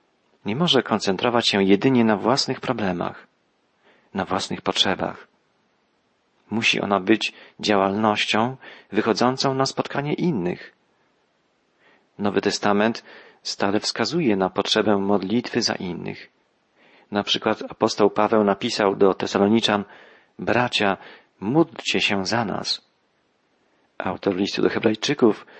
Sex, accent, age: male, native, 40-59